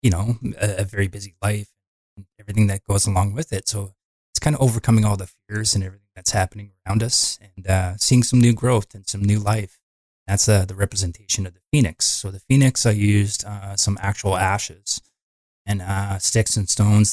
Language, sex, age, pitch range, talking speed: English, male, 20-39, 95-105 Hz, 205 wpm